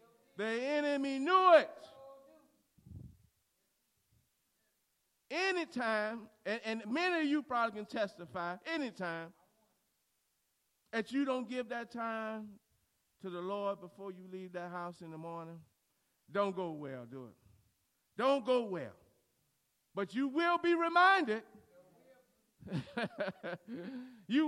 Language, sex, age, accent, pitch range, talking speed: English, male, 40-59, American, 200-315 Hz, 110 wpm